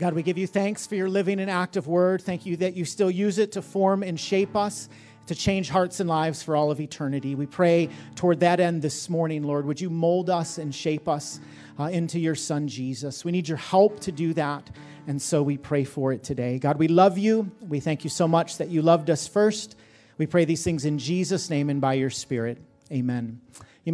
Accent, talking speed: American, 235 wpm